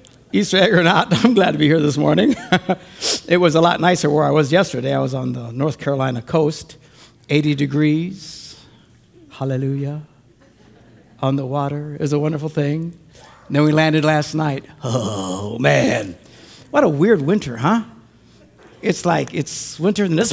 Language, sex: English, male